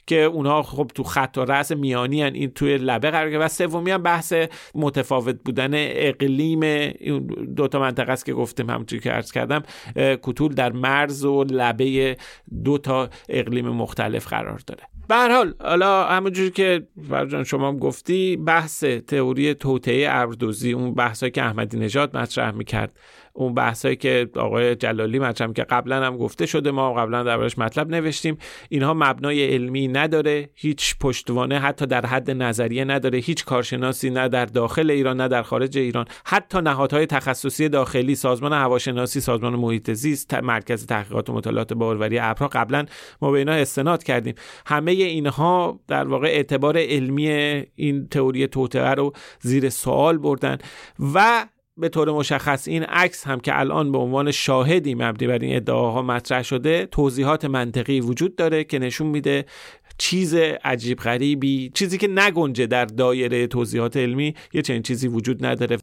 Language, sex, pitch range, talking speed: Persian, male, 125-150 Hz, 155 wpm